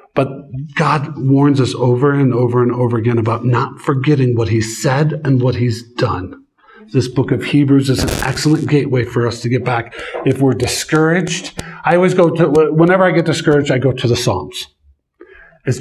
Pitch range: 120-155 Hz